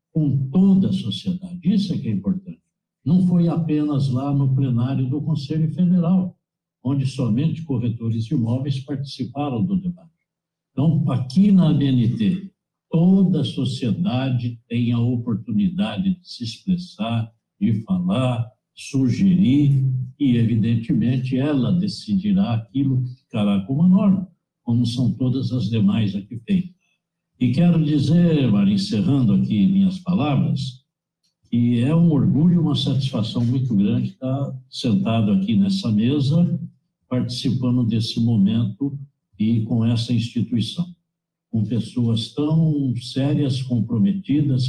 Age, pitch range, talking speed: 60-79, 120-170 Hz, 125 wpm